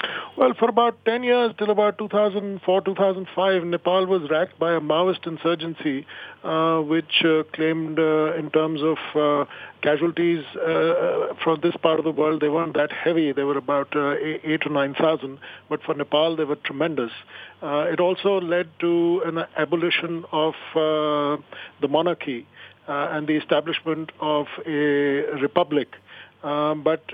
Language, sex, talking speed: English, male, 155 wpm